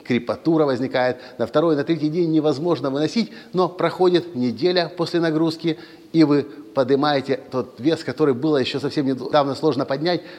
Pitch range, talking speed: 125-165 Hz, 150 wpm